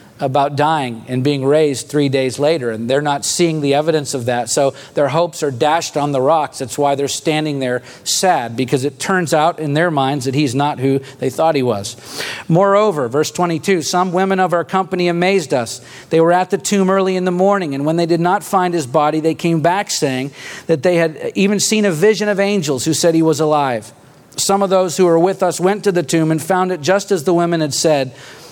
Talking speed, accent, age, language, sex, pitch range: 230 wpm, American, 40-59, English, male, 140-180 Hz